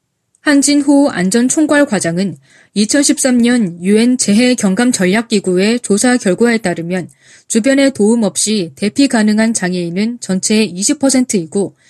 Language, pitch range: Korean, 190-270 Hz